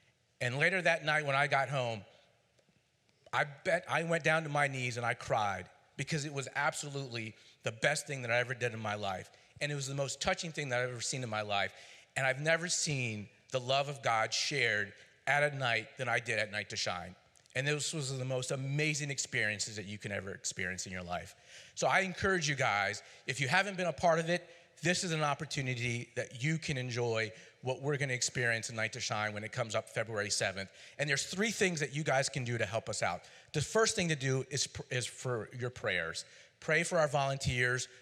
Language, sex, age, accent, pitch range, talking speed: English, male, 40-59, American, 115-150 Hz, 225 wpm